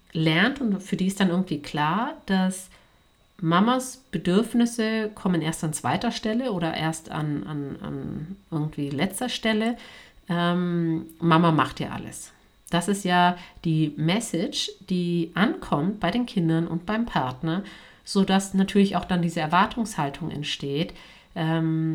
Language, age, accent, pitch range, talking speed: German, 50-69, German, 155-190 Hz, 135 wpm